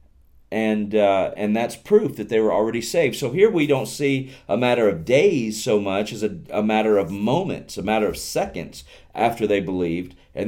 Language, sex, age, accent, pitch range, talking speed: English, male, 40-59, American, 85-115 Hz, 200 wpm